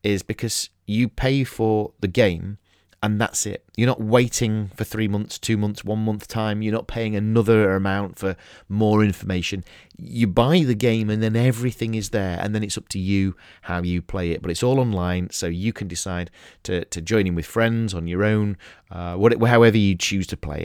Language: English